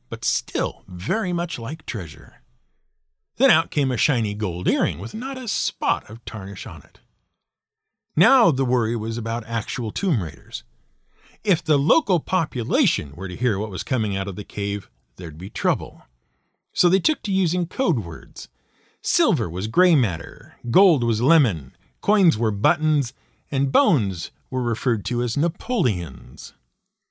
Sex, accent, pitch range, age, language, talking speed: male, American, 105-170 Hz, 50-69, English, 155 wpm